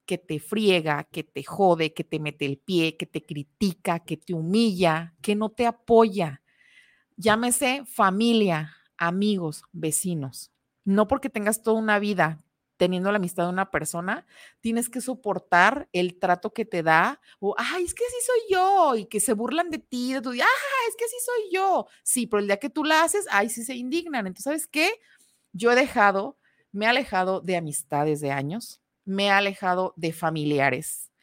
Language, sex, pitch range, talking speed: Spanish, female, 180-255 Hz, 185 wpm